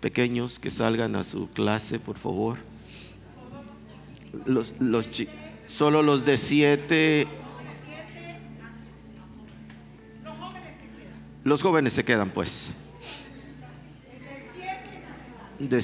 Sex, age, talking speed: male, 50-69, 80 wpm